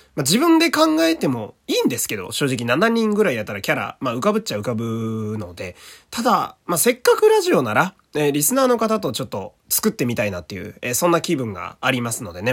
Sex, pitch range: male, 115-185 Hz